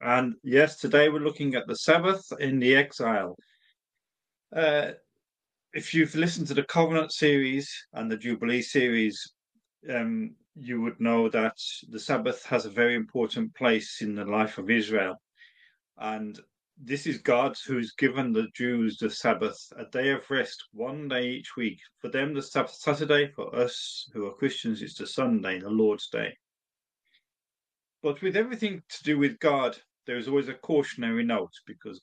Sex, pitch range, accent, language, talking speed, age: male, 120-155 Hz, British, English, 165 wpm, 40-59